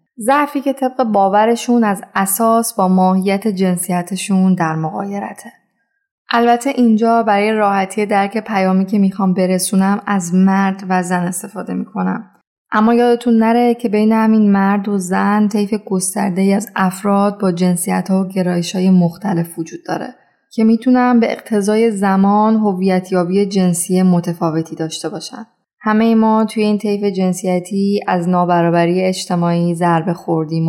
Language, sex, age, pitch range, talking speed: Persian, female, 10-29, 185-220 Hz, 135 wpm